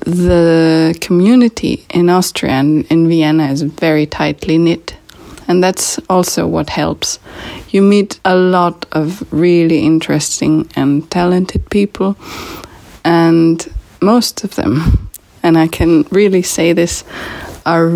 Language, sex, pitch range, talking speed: Hungarian, female, 160-195 Hz, 125 wpm